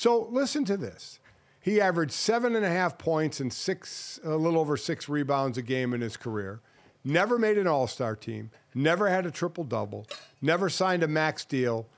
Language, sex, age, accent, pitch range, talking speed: English, male, 50-69, American, 140-185 Hz, 185 wpm